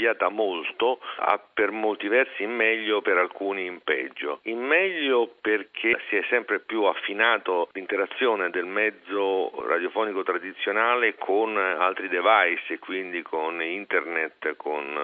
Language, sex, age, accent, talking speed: Italian, male, 50-69, native, 130 wpm